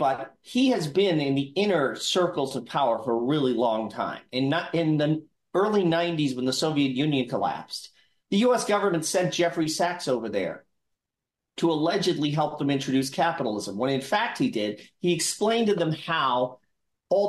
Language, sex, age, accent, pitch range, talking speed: English, male, 40-59, American, 135-190 Hz, 175 wpm